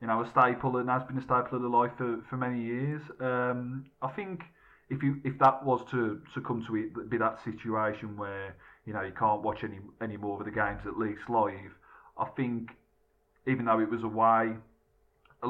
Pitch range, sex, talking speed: 105-125 Hz, male, 215 wpm